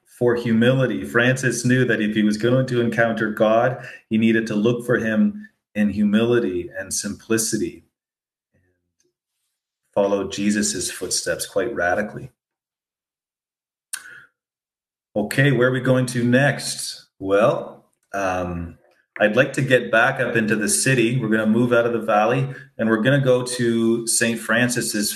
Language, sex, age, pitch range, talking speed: English, male, 30-49, 105-125 Hz, 150 wpm